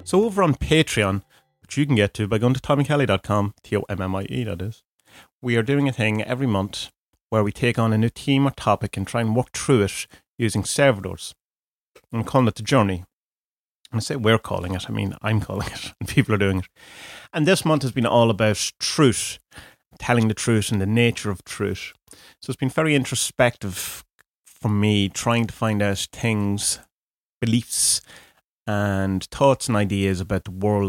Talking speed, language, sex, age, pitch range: 190 wpm, English, male, 30-49, 100-125 Hz